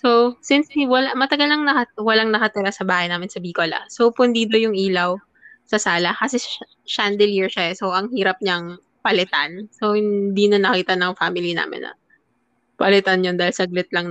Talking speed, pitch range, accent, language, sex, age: 180 wpm, 185-235 Hz, native, Filipino, female, 20-39